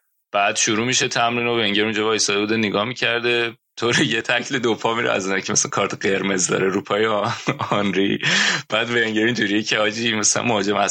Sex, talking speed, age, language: male, 175 wpm, 20-39, Persian